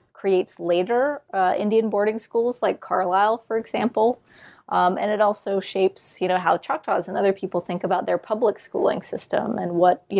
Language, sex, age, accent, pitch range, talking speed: English, female, 20-39, American, 180-210 Hz, 180 wpm